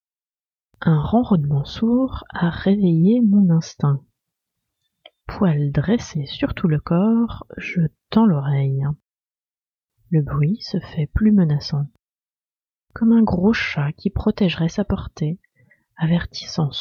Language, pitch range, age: French, 150-220 Hz, 30-49